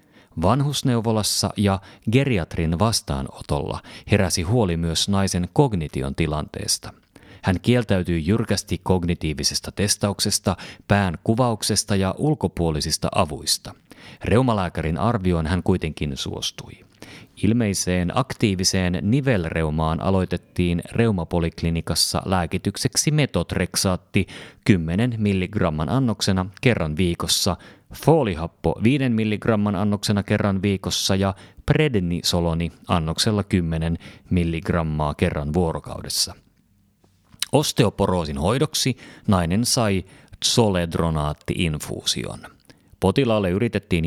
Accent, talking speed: native, 80 wpm